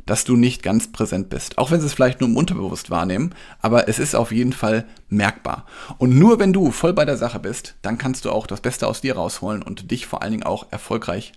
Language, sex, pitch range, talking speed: German, male, 110-125 Hz, 250 wpm